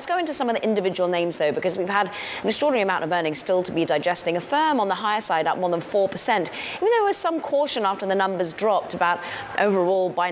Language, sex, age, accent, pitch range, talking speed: English, female, 20-39, British, 155-210 Hz, 255 wpm